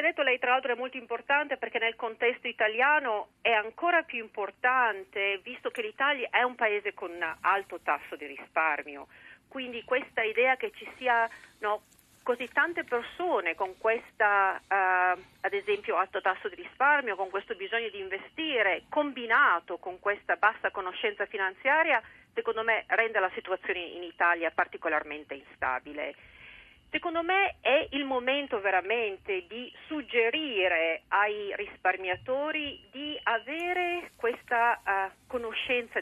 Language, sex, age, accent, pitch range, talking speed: Italian, female, 40-59, native, 195-275 Hz, 130 wpm